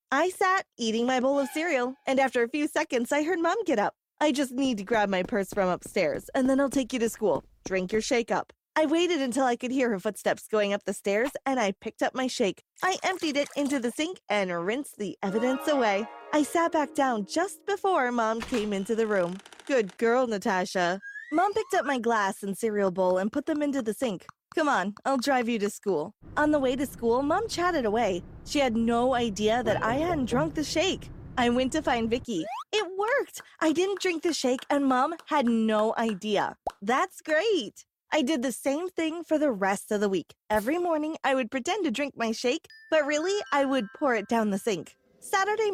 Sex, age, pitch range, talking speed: female, 20-39, 220-310 Hz, 220 wpm